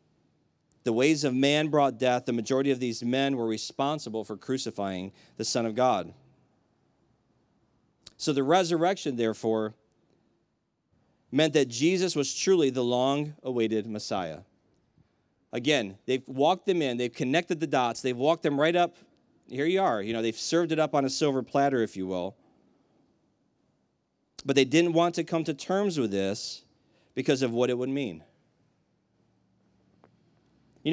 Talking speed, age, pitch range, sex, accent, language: 150 wpm, 40-59, 120-160 Hz, male, American, English